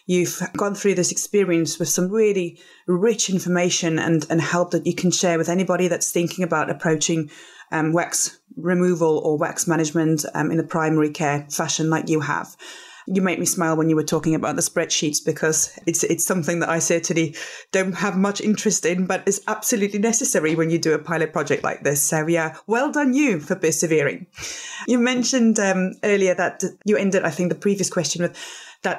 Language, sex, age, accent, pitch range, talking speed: English, female, 30-49, British, 165-210 Hz, 195 wpm